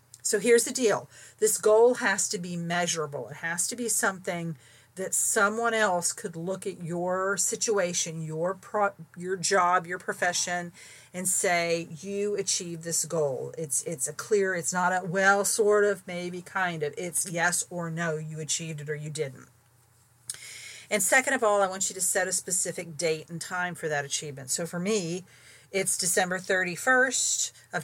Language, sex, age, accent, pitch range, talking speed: English, female, 40-59, American, 155-195 Hz, 175 wpm